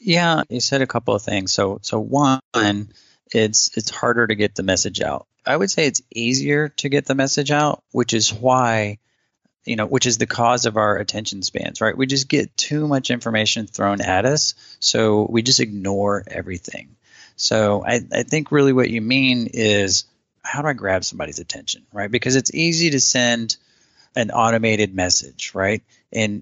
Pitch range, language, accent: 105-130 Hz, English, American